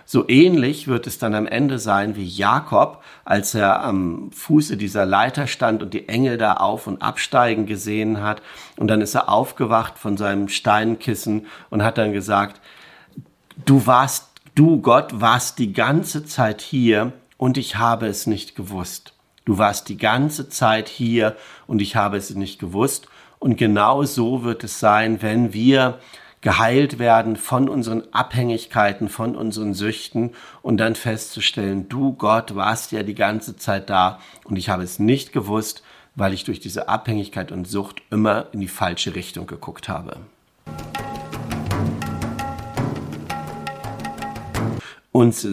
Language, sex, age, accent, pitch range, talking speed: German, male, 50-69, German, 100-120 Hz, 150 wpm